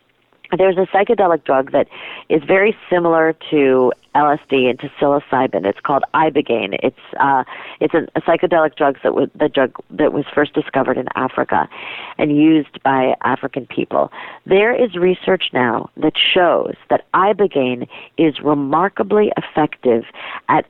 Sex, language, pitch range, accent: female, English, 145-195 Hz, American